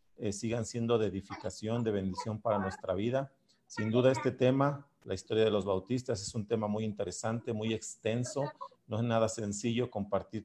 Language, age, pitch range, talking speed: Spanish, 40-59, 100-120 Hz, 180 wpm